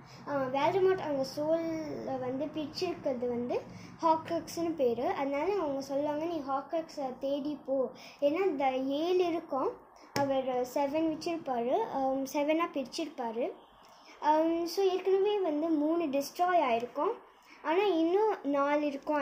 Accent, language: native, Tamil